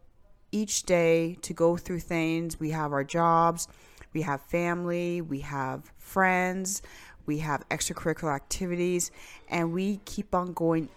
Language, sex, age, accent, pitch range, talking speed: English, female, 30-49, American, 145-175 Hz, 135 wpm